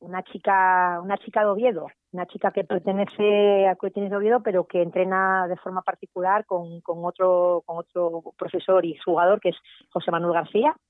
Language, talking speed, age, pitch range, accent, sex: Spanish, 180 wpm, 30-49, 175-210 Hz, Spanish, female